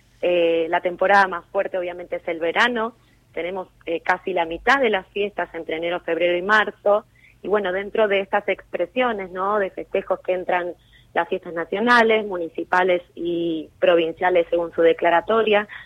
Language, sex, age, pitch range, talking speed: Spanish, female, 20-39, 165-200 Hz, 160 wpm